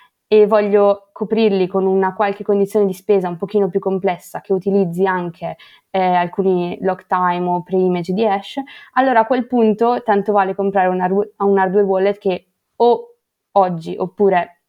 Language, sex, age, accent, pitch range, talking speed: Italian, female, 20-39, native, 185-215 Hz, 155 wpm